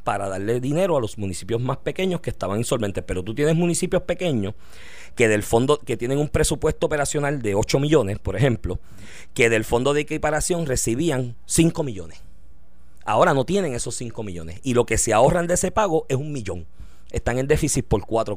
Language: Spanish